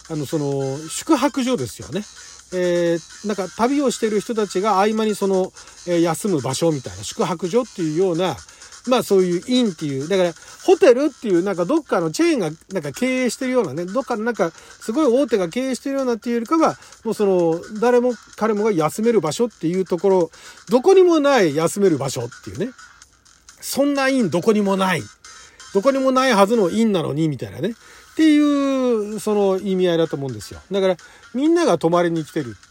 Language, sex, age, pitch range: Japanese, male, 40-59, 165-255 Hz